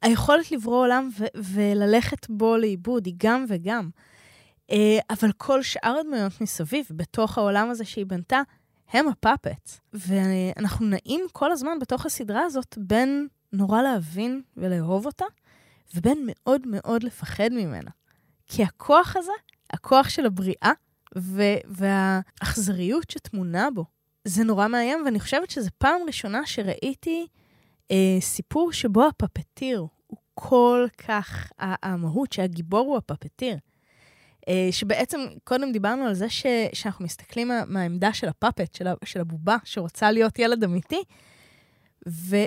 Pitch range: 190-255 Hz